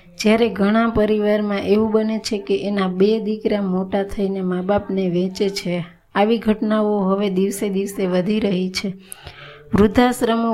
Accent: native